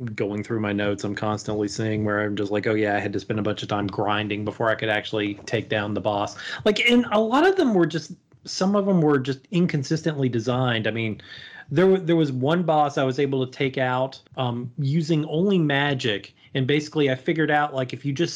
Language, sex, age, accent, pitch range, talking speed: English, male, 30-49, American, 120-160 Hz, 235 wpm